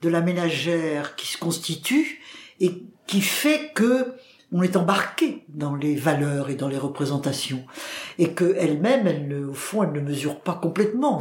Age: 60-79